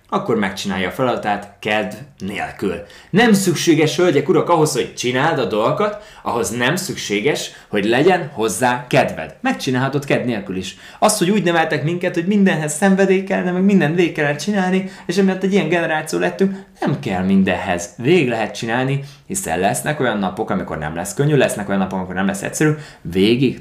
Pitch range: 105-150 Hz